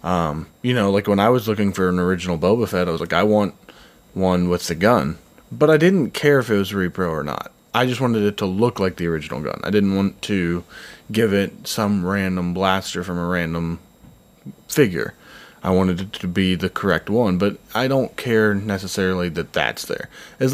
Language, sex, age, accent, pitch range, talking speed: English, male, 20-39, American, 90-110 Hz, 210 wpm